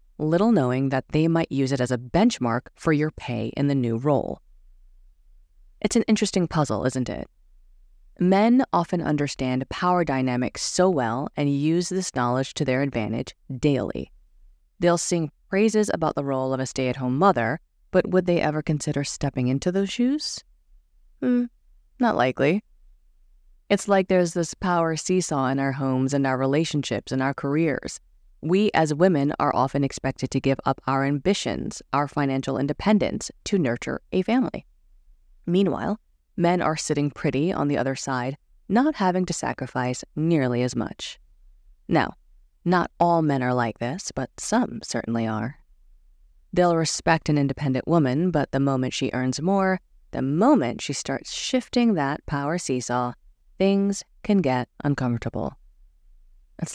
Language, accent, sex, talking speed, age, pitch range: English, American, female, 150 wpm, 20-39, 125-175 Hz